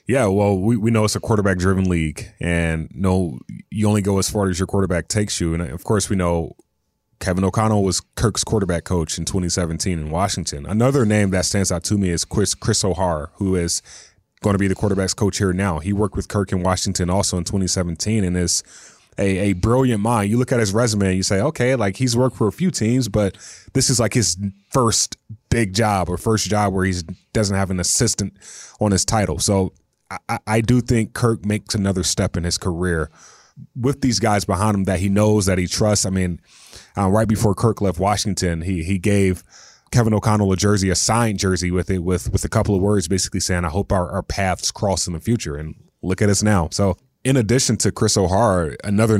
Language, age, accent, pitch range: English, 20-39, American, 90-105 Hz